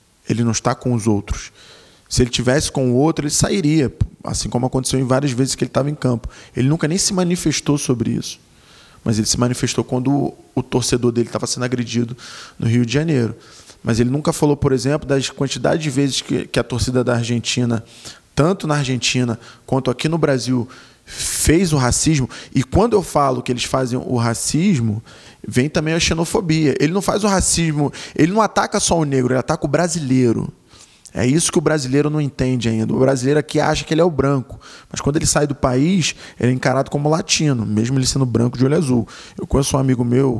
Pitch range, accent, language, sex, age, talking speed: 125-150 Hz, Brazilian, Portuguese, male, 20-39, 210 wpm